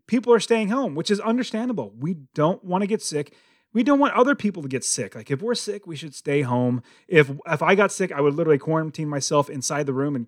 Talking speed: 250 wpm